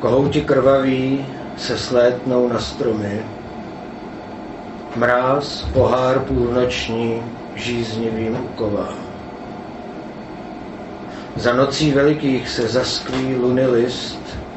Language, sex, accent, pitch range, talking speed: Czech, male, native, 115-135 Hz, 70 wpm